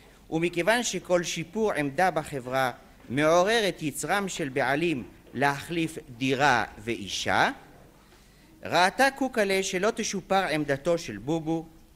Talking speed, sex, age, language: 100 wpm, male, 50-69, Hebrew